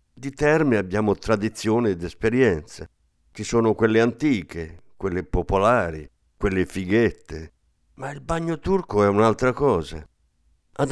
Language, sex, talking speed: Italian, male, 120 wpm